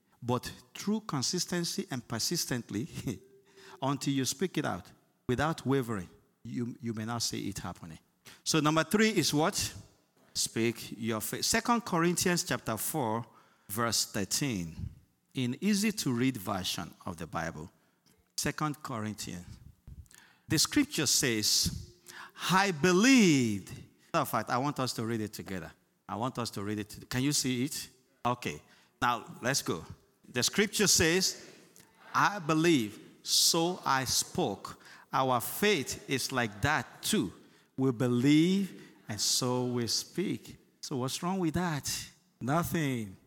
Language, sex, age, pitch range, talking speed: English, male, 50-69, 120-175 Hz, 130 wpm